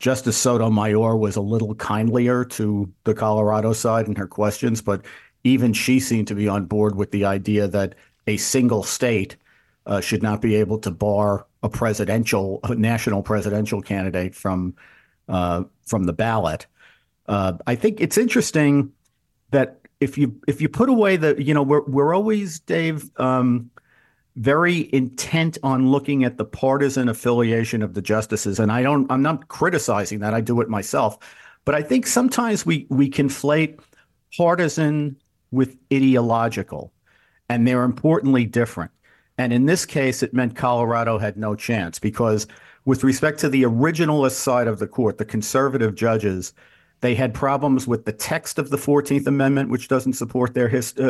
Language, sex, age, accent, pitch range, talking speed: English, male, 50-69, American, 105-140 Hz, 165 wpm